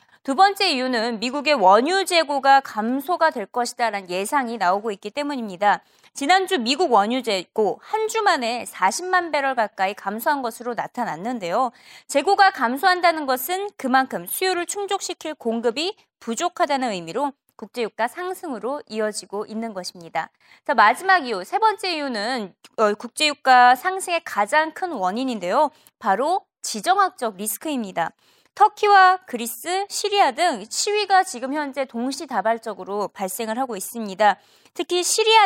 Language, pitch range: Korean, 220-350 Hz